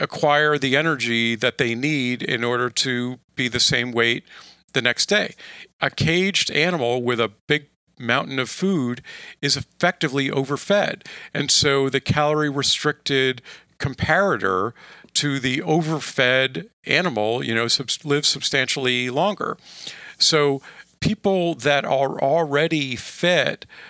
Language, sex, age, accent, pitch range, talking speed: English, male, 50-69, American, 125-155 Hz, 125 wpm